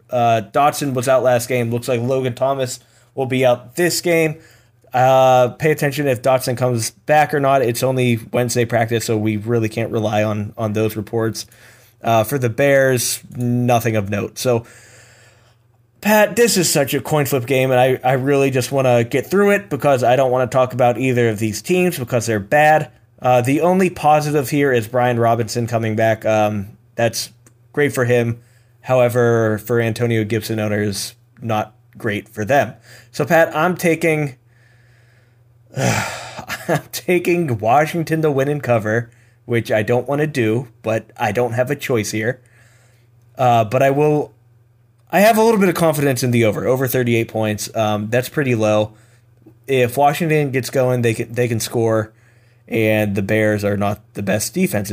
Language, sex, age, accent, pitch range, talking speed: English, male, 20-39, American, 115-135 Hz, 180 wpm